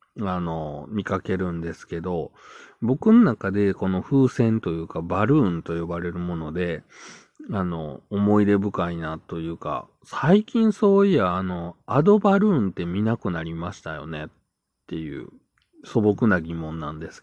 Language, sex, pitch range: Japanese, male, 85-125 Hz